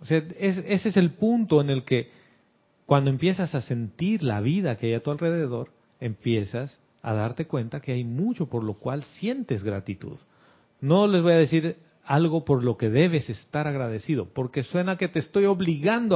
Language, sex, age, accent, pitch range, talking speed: Spanish, male, 40-59, Mexican, 115-180 Hz, 185 wpm